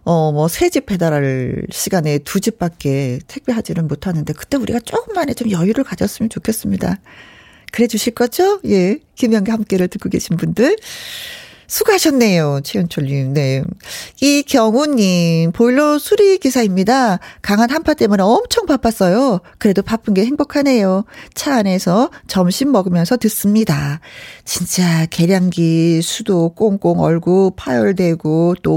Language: Korean